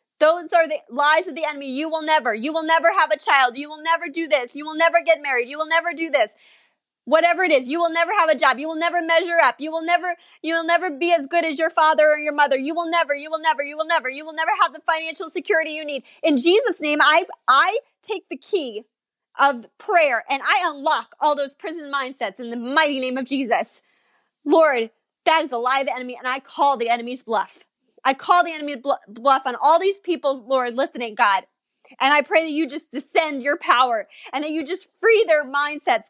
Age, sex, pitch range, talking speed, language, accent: 30-49, female, 275-335 Hz, 240 wpm, English, American